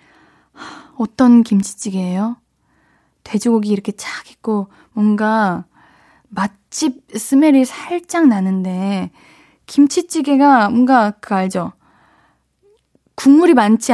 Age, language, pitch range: 20-39, Korean, 210-280 Hz